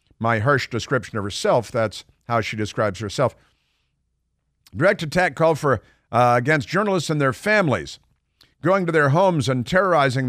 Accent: American